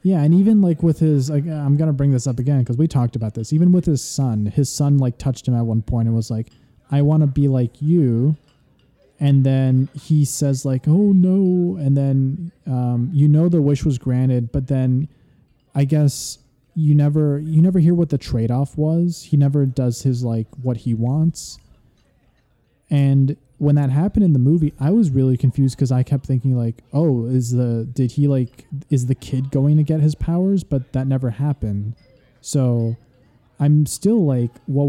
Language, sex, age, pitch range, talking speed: English, male, 20-39, 125-150 Hz, 200 wpm